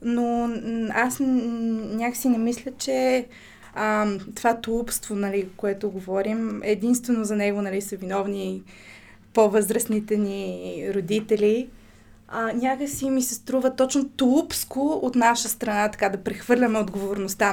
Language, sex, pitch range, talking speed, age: Bulgarian, female, 200-240 Hz, 120 wpm, 20-39